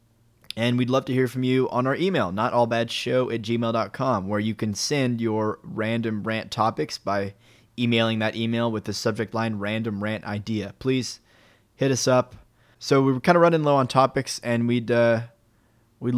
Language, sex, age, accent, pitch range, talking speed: English, male, 20-39, American, 110-125 Hz, 175 wpm